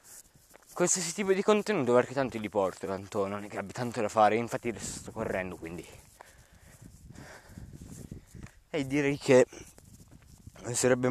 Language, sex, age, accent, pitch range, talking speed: Italian, male, 20-39, native, 115-155 Hz, 130 wpm